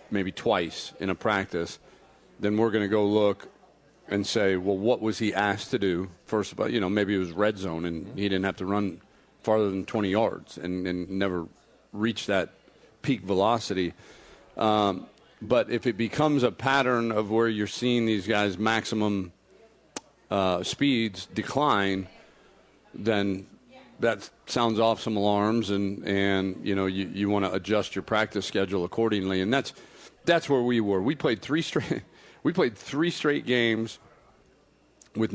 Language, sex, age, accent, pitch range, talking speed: English, male, 40-59, American, 95-115 Hz, 170 wpm